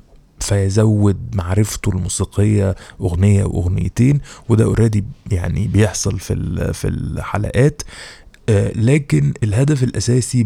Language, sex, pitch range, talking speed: Arabic, male, 100-115 Hz, 85 wpm